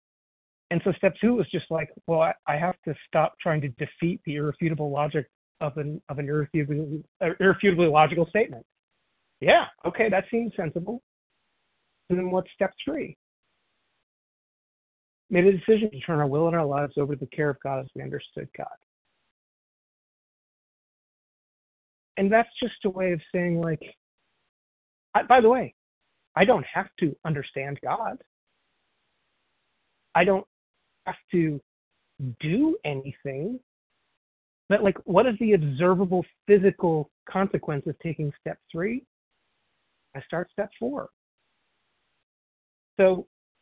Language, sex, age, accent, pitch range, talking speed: English, male, 30-49, American, 155-220 Hz, 135 wpm